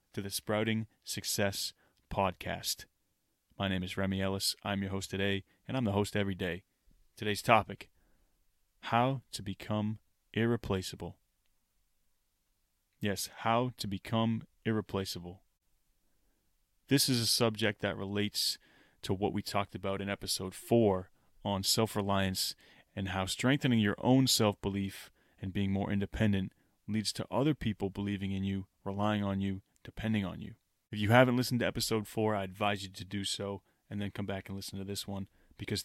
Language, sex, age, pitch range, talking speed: English, male, 20-39, 95-110 Hz, 155 wpm